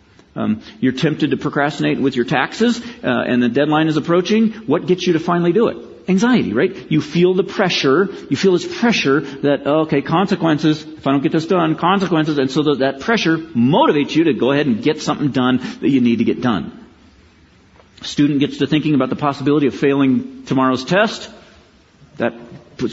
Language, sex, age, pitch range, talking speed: English, male, 50-69, 130-180 Hz, 190 wpm